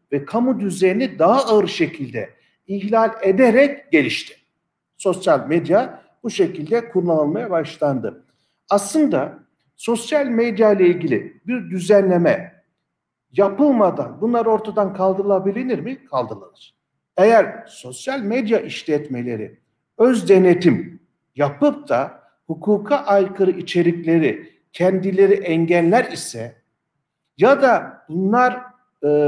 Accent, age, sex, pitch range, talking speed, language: native, 60-79, male, 155-235 Hz, 95 wpm, Turkish